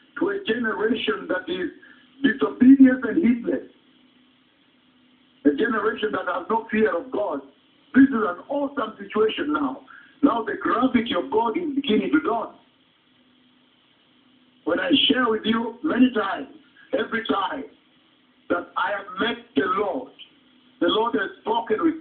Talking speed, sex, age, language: 140 wpm, male, 50-69, English